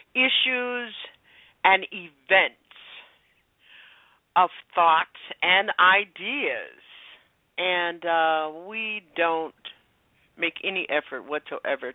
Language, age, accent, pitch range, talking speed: English, 50-69, American, 150-230 Hz, 75 wpm